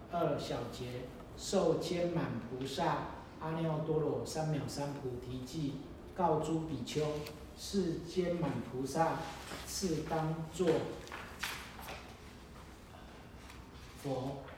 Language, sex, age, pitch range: Chinese, male, 40-59, 125-165 Hz